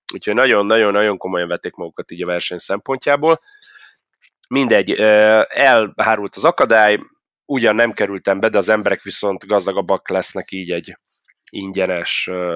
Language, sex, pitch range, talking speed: Hungarian, male, 95-105 Hz, 130 wpm